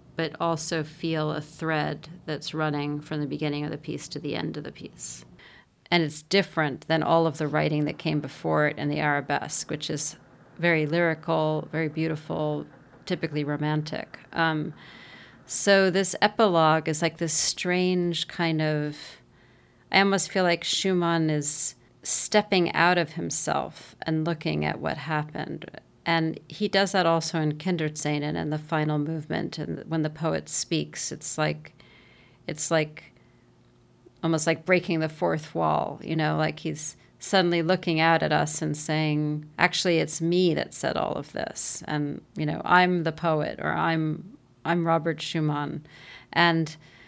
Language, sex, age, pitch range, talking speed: English, female, 40-59, 150-170 Hz, 160 wpm